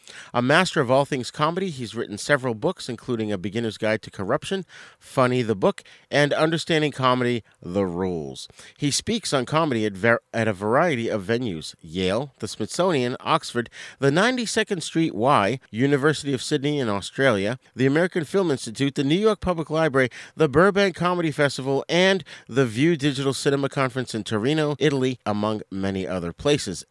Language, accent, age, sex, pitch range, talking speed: English, American, 40-59, male, 115-155 Hz, 165 wpm